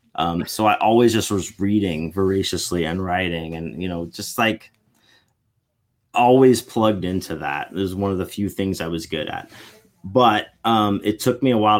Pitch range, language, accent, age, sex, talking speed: 95-120 Hz, English, American, 30-49, male, 190 wpm